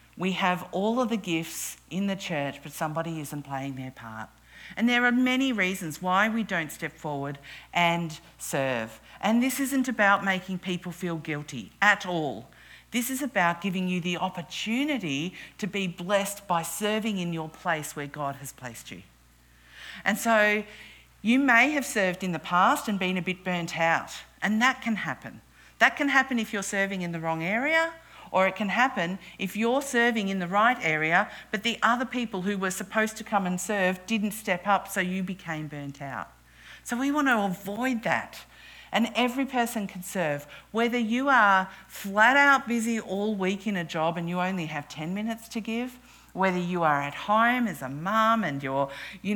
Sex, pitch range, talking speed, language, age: female, 165-225 Hz, 190 wpm, English, 50-69